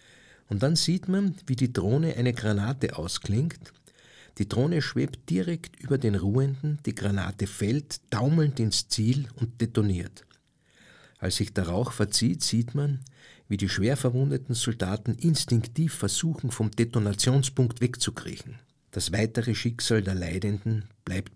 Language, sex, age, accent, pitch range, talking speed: German, male, 50-69, Austrian, 100-130 Hz, 135 wpm